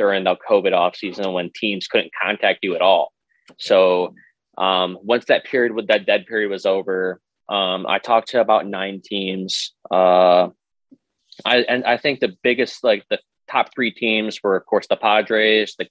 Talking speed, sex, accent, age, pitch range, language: 175 wpm, male, American, 20-39, 90-100 Hz, English